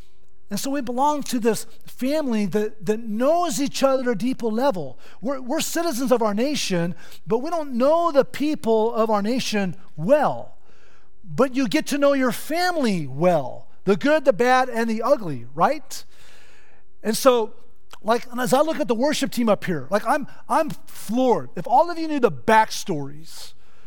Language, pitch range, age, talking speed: English, 200-275 Hz, 40-59, 180 wpm